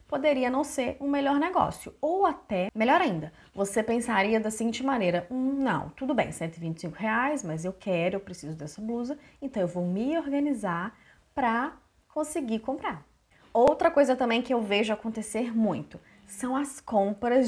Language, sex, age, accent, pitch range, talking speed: Portuguese, female, 20-39, Brazilian, 185-275 Hz, 165 wpm